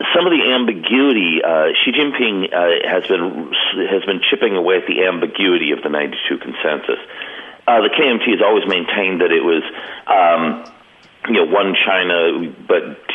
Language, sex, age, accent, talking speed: English, male, 50-69, American, 165 wpm